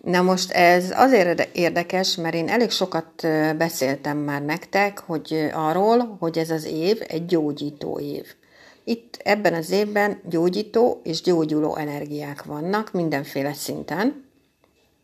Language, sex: Hungarian, female